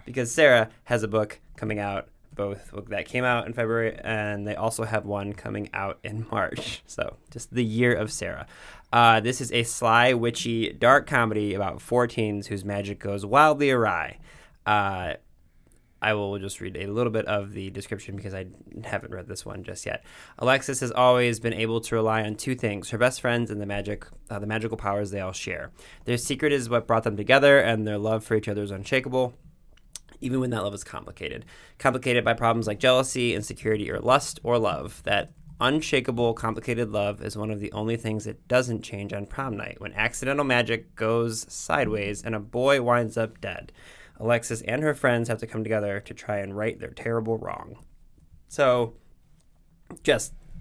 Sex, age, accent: male, 20-39, American